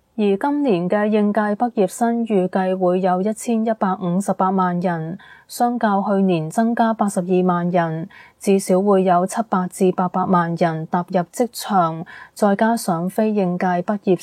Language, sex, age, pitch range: Chinese, female, 20-39, 180-220 Hz